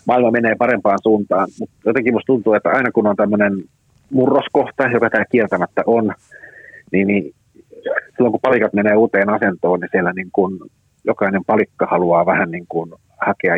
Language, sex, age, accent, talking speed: Finnish, male, 40-59, native, 155 wpm